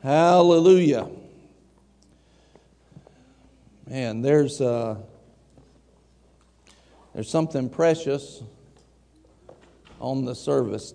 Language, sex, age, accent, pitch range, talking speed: English, male, 50-69, American, 110-145 Hz, 55 wpm